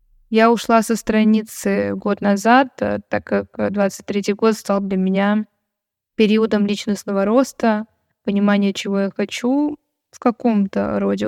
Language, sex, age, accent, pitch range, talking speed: Russian, female, 20-39, native, 195-230 Hz, 130 wpm